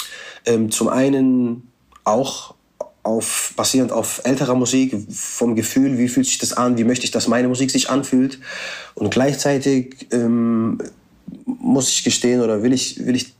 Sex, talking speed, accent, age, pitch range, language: male, 150 wpm, German, 30-49, 115-135 Hz, German